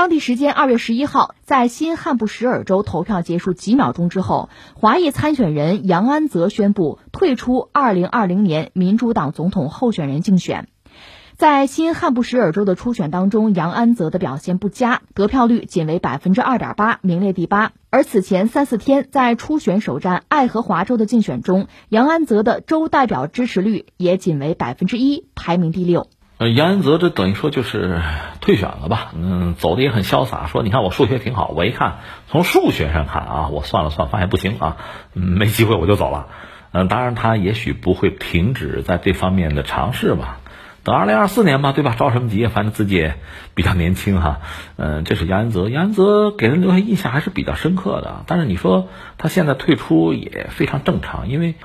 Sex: female